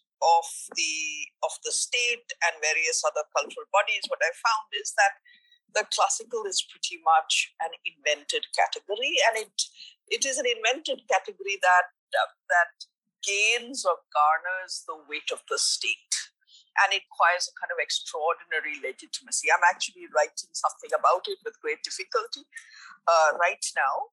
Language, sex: English, female